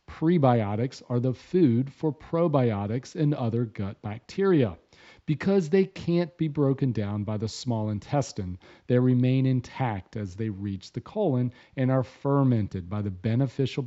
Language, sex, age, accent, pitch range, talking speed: English, male, 40-59, American, 110-140 Hz, 145 wpm